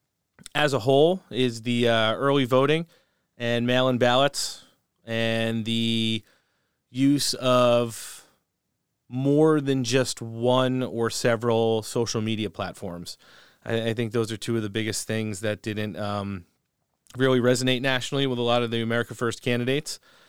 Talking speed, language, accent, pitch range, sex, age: 140 wpm, English, American, 110-125 Hz, male, 30-49